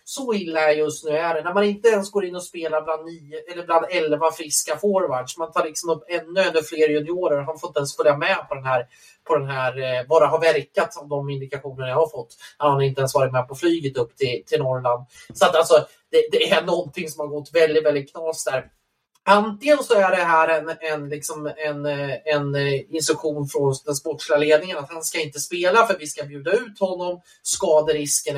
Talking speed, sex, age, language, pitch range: 225 wpm, male, 30-49, Swedish, 140-170 Hz